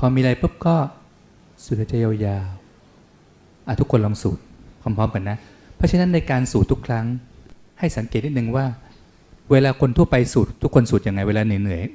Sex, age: male, 20-39